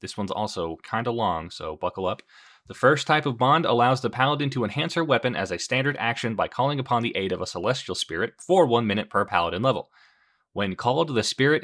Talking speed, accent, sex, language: 225 wpm, American, male, English